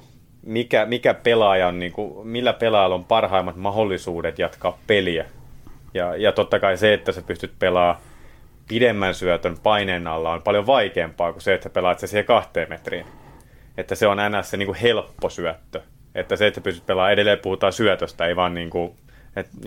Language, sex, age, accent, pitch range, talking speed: Finnish, male, 30-49, native, 90-110 Hz, 175 wpm